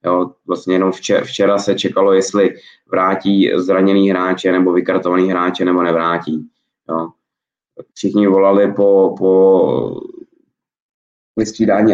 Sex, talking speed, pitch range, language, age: male, 110 wpm, 90-100 Hz, Czech, 20-39